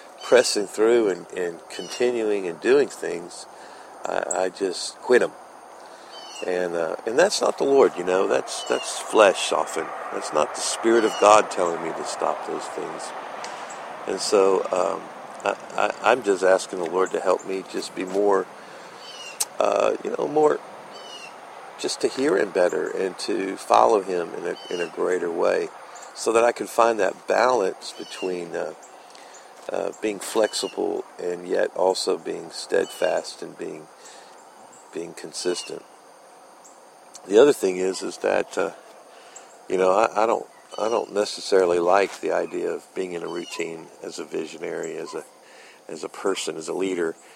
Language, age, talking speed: English, 50-69, 160 wpm